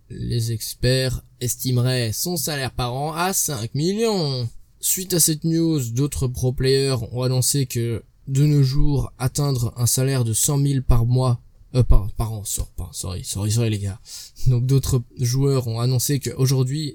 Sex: male